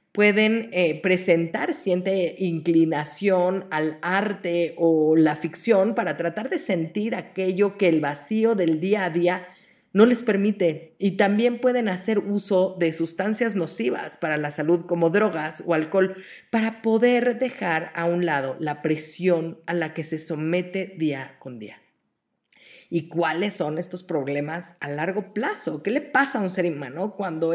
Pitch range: 165-210 Hz